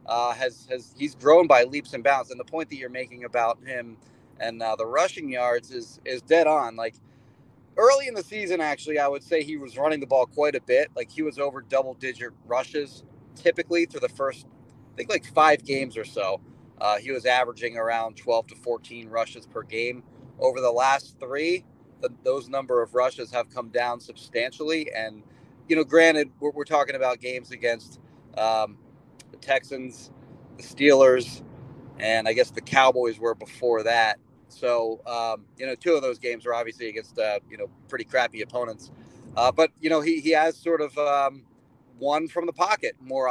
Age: 30-49